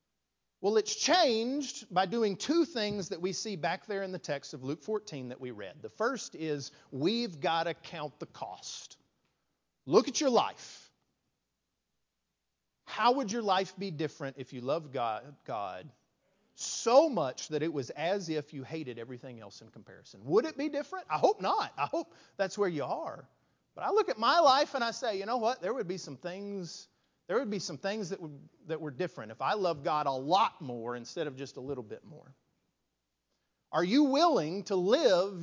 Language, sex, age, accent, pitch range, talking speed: English, male, 40-59, American, 155-260 Hz, 195 wpm